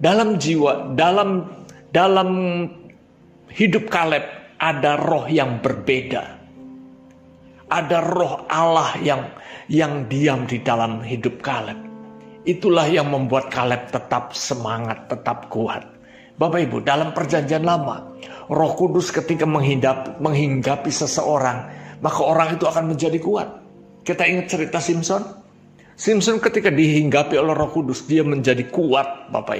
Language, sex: Indonesian, male